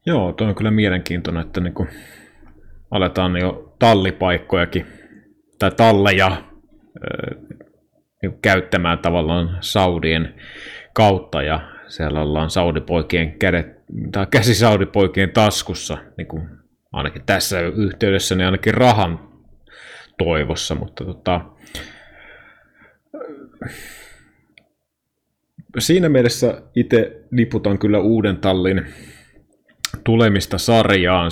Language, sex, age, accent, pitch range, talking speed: Finnish, male, 30-49, native, 85-100 Hz, 80 wpm